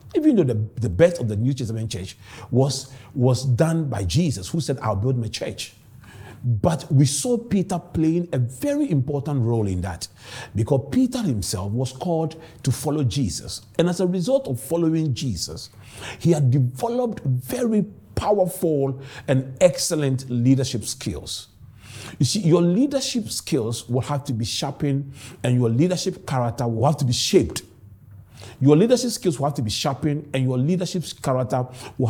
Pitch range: 115-165 Hz